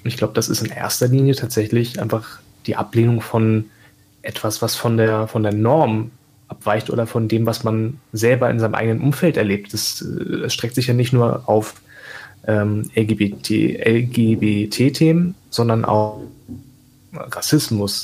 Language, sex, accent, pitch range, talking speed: German, male, German, 110-130 Hz, 150 wpm